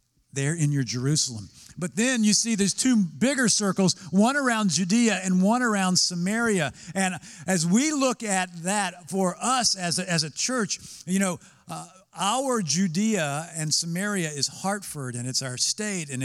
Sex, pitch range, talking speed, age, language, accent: male, 145-200 Hz, 170 wpm, 50-69, English, American